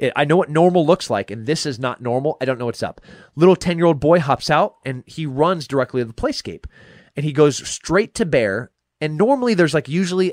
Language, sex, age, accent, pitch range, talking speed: English, male, 30-49, American, 120-165 Hz, 225 wpm